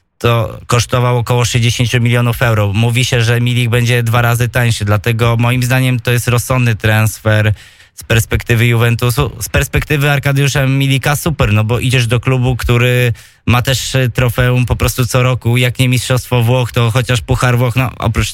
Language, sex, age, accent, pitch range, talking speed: Polish, male, 20-39, native, 120-130 Hz, 170 wpm